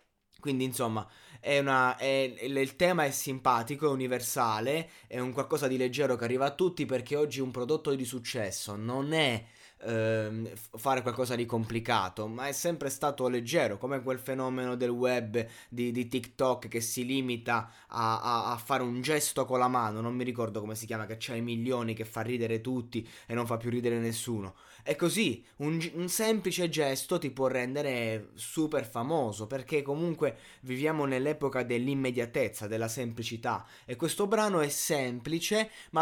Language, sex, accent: Italian, male, native